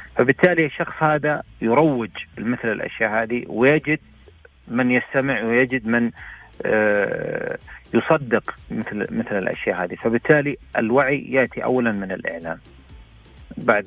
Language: Arabic